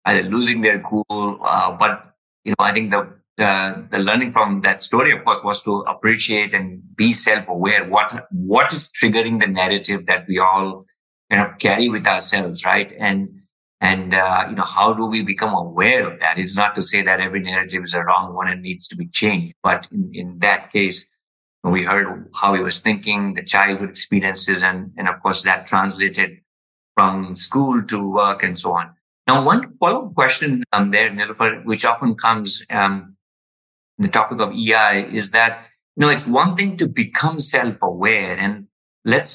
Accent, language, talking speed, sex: Indian, English, 190 wpm, male